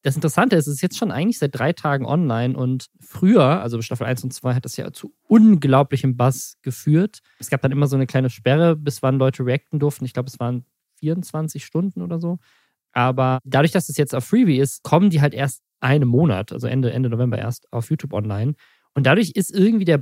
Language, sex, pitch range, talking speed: German, male, 130-160 Hz, 225 wpm